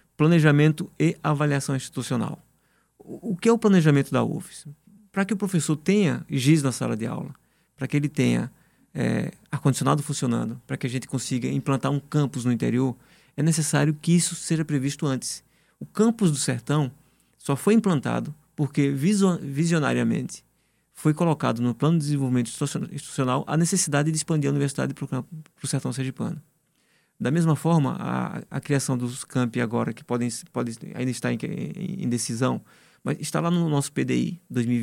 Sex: male